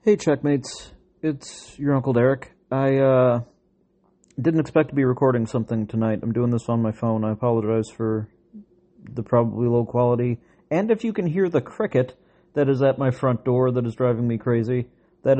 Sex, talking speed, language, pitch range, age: male, 185 wpm, English, 115-150 Hz, 40-59